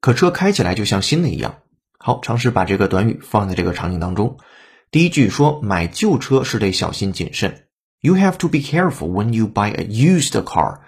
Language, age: Chinese, 30-49